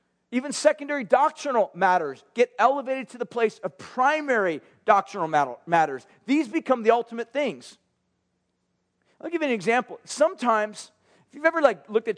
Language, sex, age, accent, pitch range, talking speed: English, male, 40-59, American, 190-240 Hz, 150 wpm